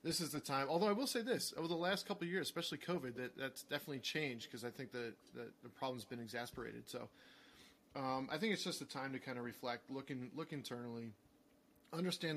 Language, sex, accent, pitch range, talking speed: English, male, American, 125-155 Hz, 230 wpm